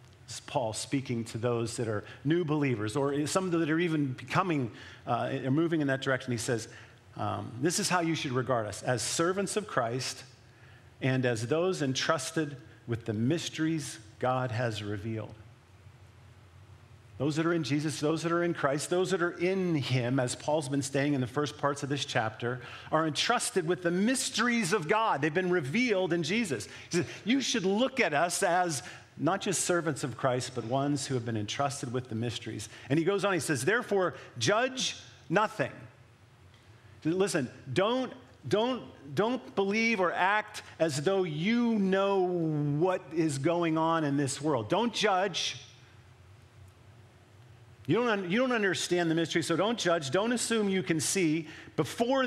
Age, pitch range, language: 50-69, 120-180 Hz, English